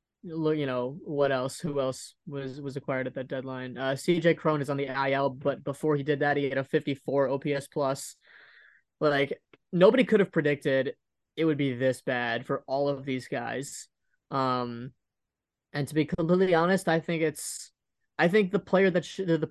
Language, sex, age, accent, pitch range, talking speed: English, male, 20-39, American, 135-155 Hz, 195 wpm